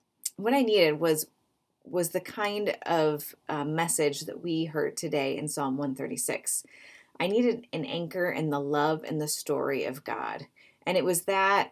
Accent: American